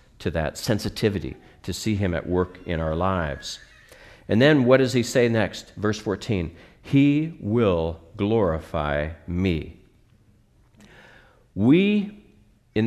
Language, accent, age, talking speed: English, American, 50-69, 120 wpm